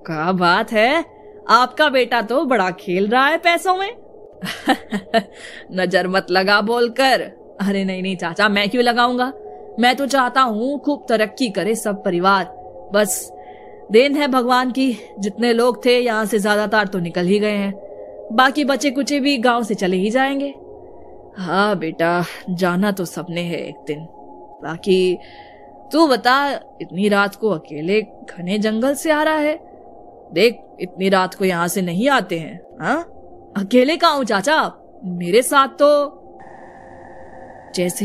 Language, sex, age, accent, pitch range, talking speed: Hindi, female, 20-39, native, 185-255 Hz, 150 wpm